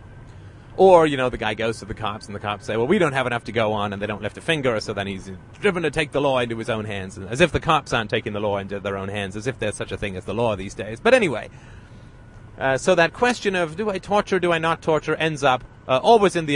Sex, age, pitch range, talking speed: male, 30-49, 110-145 Hz, 295 wpm